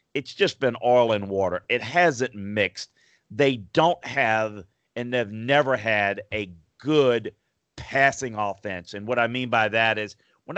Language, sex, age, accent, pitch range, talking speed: English, male, 40-59, American, 105-125 Hz, 160 wpm